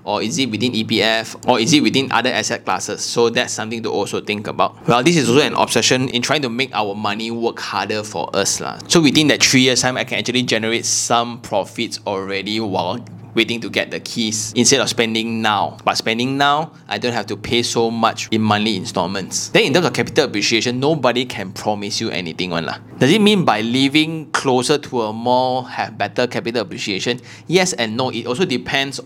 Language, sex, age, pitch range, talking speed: English, male, 20-39, 110-135 Hz, 210 wpm